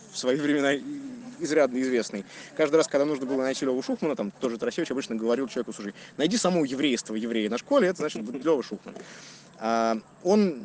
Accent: native